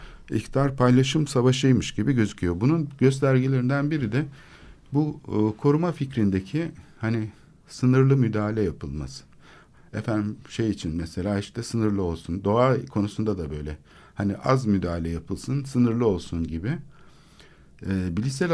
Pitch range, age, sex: 95-135 Hz, 60-79, male